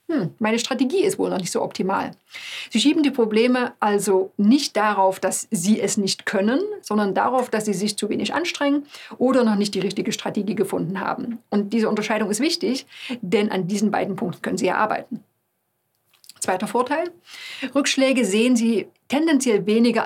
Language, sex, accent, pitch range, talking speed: German, female, German, 200-255 Hz, 170 wpm